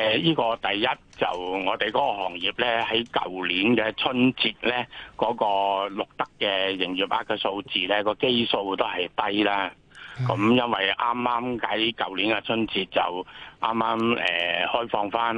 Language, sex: Chinese, male